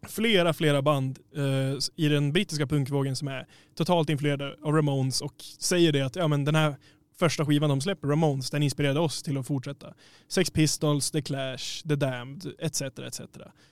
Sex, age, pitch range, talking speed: male, 20-39, 140-165 Hz, 160 wpm